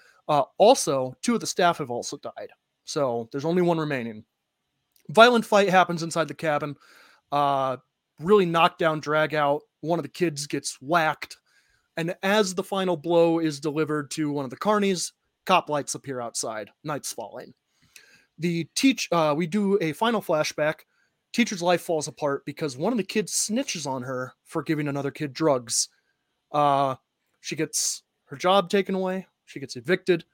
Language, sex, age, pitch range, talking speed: English, male, 30-49, 145-190 Hz, 170 wpm